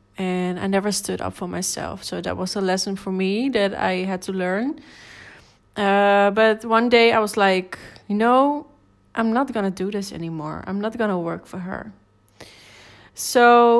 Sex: female